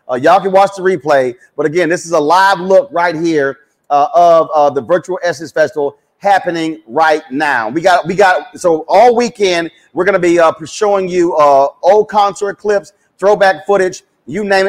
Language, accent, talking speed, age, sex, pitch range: English, American, 190 wpm, 40-59, male, 150-195 Hz